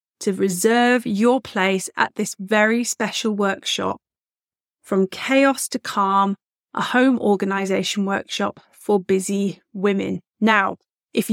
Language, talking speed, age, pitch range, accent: English, 115 wpm, 30-49, 200-245 Hz, British